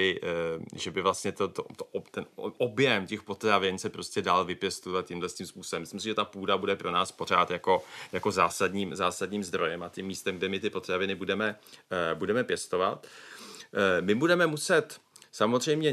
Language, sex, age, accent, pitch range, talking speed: Czech, male, 30-49, native, 95-125 Hz, 165 wpm